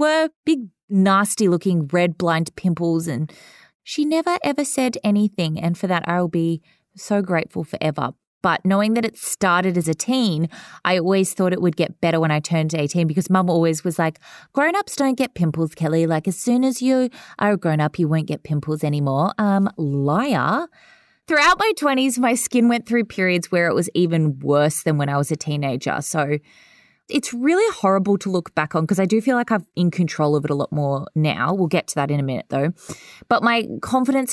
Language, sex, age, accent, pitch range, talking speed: English, female, 20-39, Australian, 165-245 Hz, 205 wpm